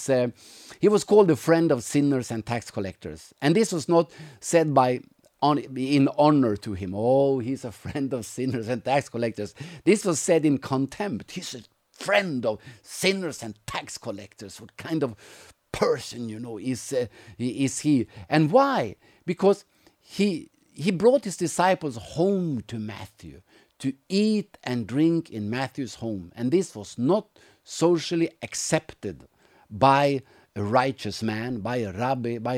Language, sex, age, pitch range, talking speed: English, male, 50-69, 110-145 Hz, 160 wpm